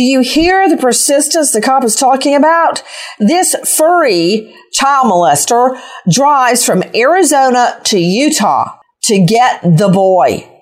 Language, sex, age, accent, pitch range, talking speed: English, female, 40-59, American, 190-280 Hz, 130 wpm